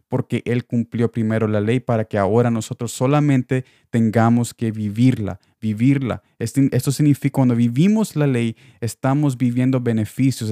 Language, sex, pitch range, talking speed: Spanish, male, 110-130 Hz, 135 wpm